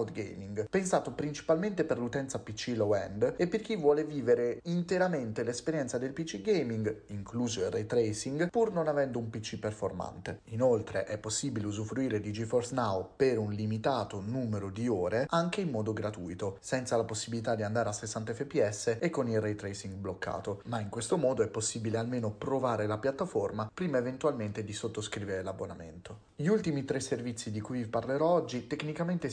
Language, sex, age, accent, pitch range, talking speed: Italian, male, 30-49, native, 105-145 Hz, 170 wpm